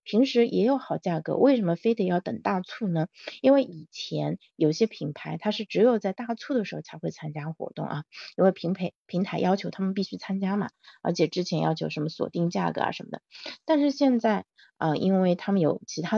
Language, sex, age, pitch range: Chinese, female, 30-49, 170-220 Hz